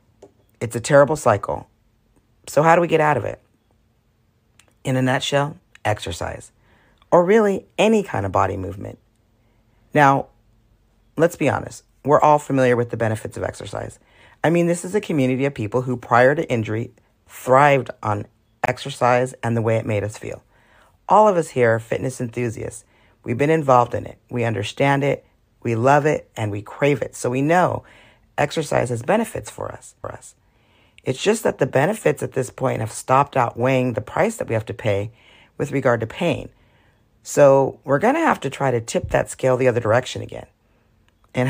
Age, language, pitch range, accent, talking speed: 40-59, English, 110-135 Hz, American, 185 wpm